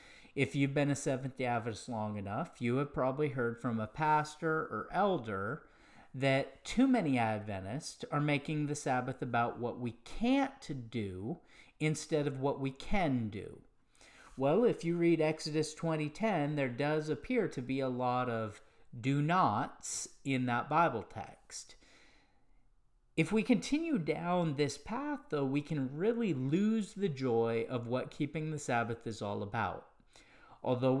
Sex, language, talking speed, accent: male, English, 150 wpm, American